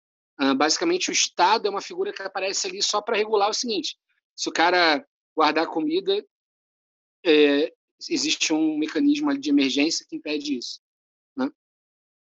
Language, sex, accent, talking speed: Portuguese, male, Brazilian, 140 wpm